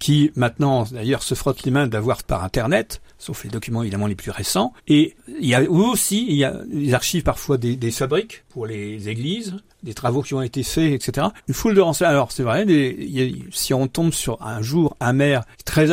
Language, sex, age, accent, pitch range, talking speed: French, male, 60-79, French, 115-150 Hz, 220 wpm